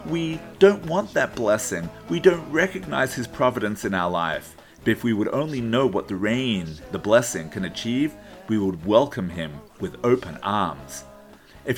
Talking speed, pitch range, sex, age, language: 175 wpm, 100-165 Hz, male, 40-59, English